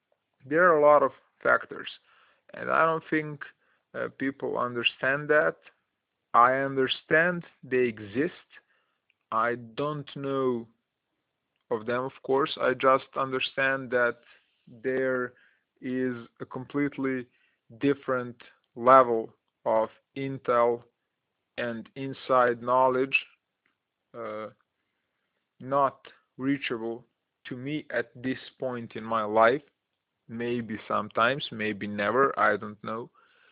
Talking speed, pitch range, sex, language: 105 wpm, 115-135 Hz, male, English